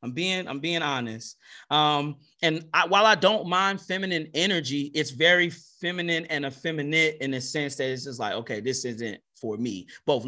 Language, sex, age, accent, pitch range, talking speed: English, male, 30-49, American, 135-170 Hz, 180 wpm